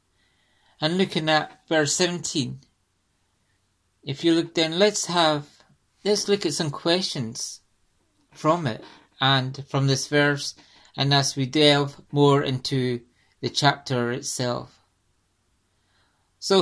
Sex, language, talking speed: male, English, 115 wpm